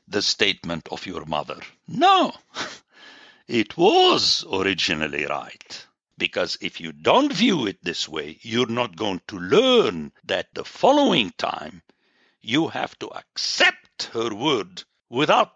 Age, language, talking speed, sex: 60-79, English, 130 wpm, male